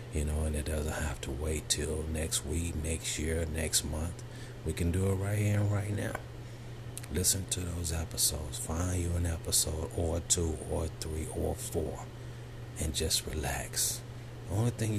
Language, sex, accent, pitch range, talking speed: English, male, American, 80-120 Hz, 175 wpm